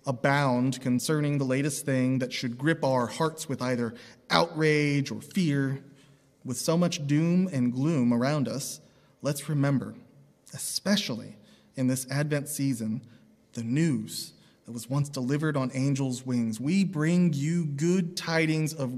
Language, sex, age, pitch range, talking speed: English, male, 30-49, 125-175 Hz, 140 wpm